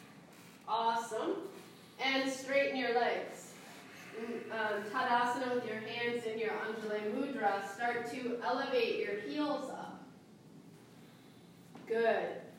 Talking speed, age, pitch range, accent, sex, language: 95 wpm, 30-49, 220-255 Hz, American, female, English